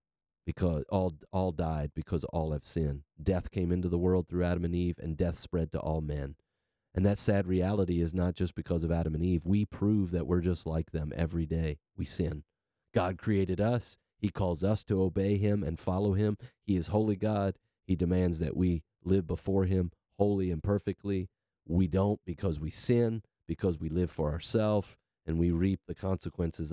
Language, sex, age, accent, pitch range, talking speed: English, male, 40-59, American, 80-95 Hz, 195 wpm